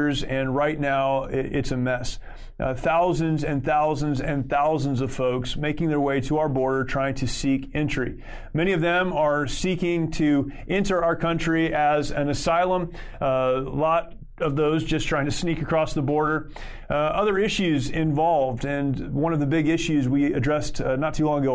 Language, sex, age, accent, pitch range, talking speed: English, male, 30-49, American, 130-155 Hz, 180 wpm